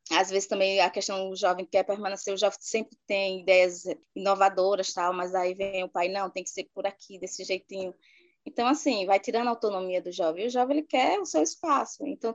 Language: Portuguese